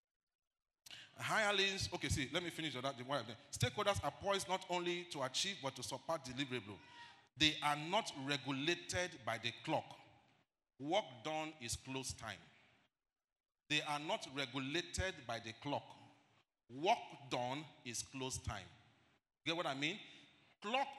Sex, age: male, 40-59